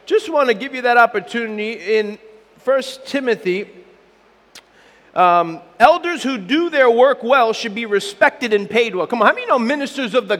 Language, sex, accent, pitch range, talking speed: English, male, American, 205-280 Hz, 180 wpm